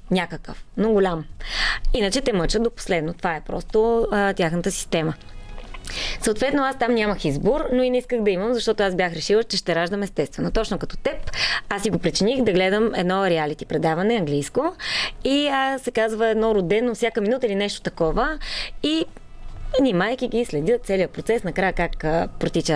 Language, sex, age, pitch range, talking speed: Bulgarian, female, 20-39, 180-240 Hz, 175 wpm